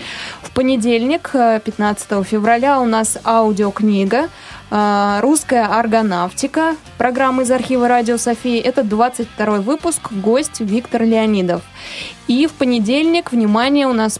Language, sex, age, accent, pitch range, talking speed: Russian, female, 20-39, native, 215-265 Hz, 110 wpm